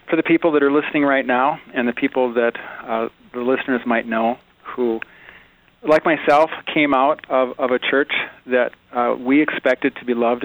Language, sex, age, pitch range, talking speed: English, male, 40-59, 115-135 Hz, 190 wpm